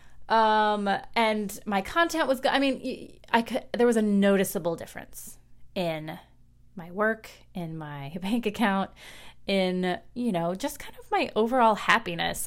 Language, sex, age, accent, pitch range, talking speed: English, female, 30-49, American, 170-220 Hz, 145 wpm